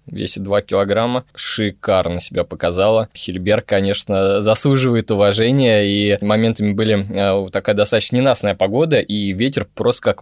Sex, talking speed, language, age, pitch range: male, 125 wpm, Russian, 20-39, 105-125 Hz